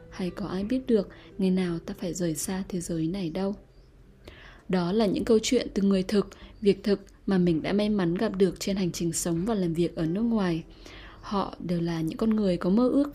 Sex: female